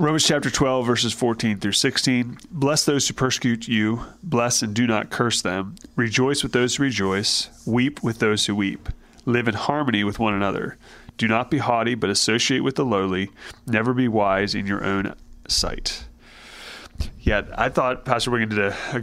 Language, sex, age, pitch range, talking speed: English, male, 30-49, 100-120 Hz, 185 wpm